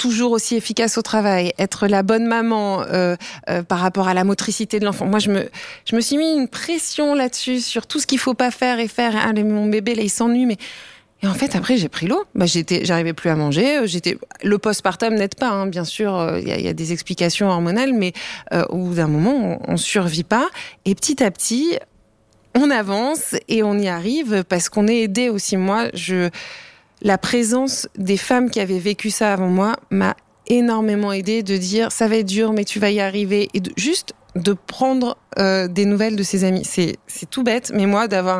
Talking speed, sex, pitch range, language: 225 wpm, female, 195-235 Hz, French